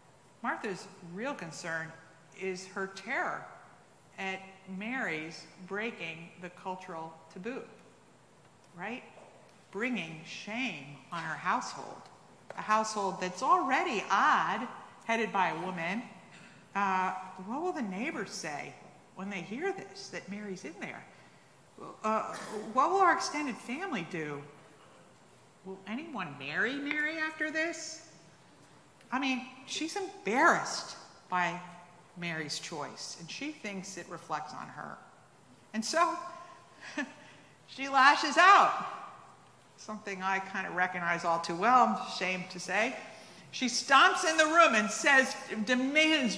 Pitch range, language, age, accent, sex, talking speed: 180-285 Hz, English, 50-69, American, female, 120 wpm